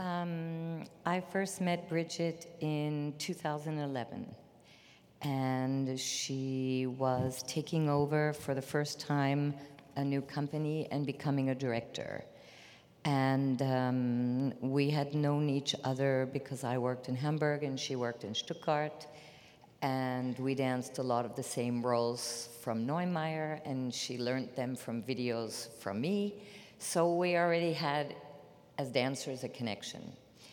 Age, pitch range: 50-69, 130-155 Hz